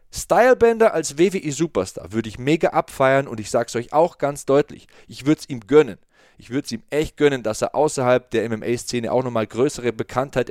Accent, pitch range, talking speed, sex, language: German, 135-180 Hz, 205 wpm, male, German